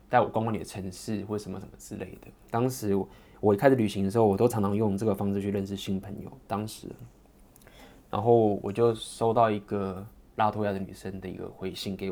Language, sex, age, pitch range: Chinese, male, 20-39, 95-110 Hz